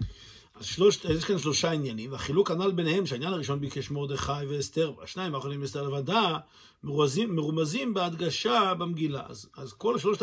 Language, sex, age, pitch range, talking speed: Hebrew, male, 50-69, 145-200 Hz, 145 wpm